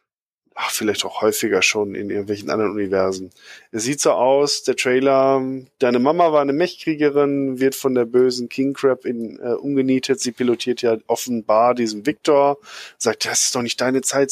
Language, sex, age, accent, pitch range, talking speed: German, male, 20-39, German, 115-135 Hz, 170 wpm